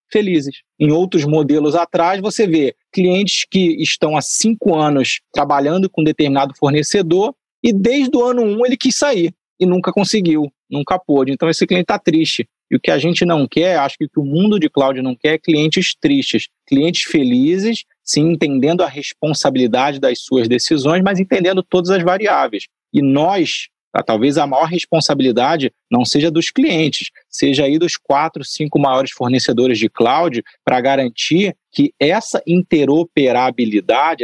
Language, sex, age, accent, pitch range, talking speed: Portuguese, male, 30-49, Brazilian, 140-190 Hz, 160 wpm